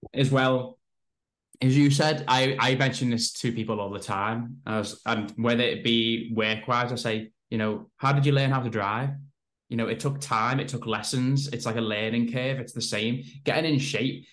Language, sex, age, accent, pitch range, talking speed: English, male, 10-29, British, 115-135 Hz, 210 wpm